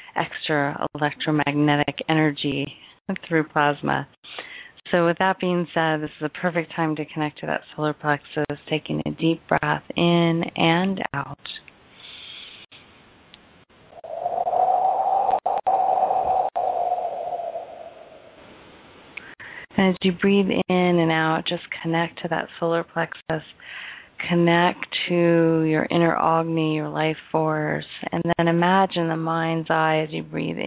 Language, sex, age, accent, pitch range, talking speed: English, female, 30-49, American, 150-185 Hz, 110 wpm